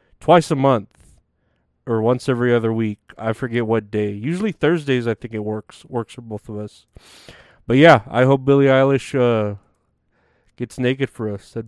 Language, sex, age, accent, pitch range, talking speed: English, male, 30-49, American, 115-145 Hz, 175 wpm